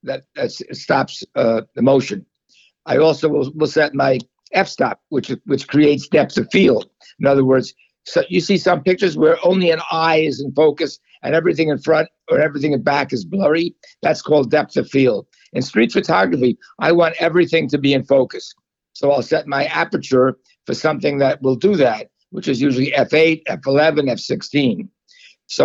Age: 60-79